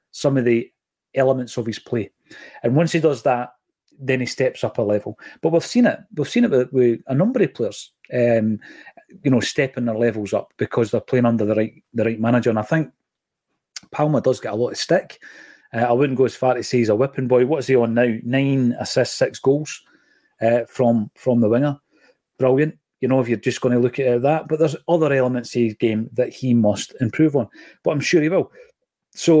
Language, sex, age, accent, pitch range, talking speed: English, male, 30-49, British, 120-145 Hz, 230 wpm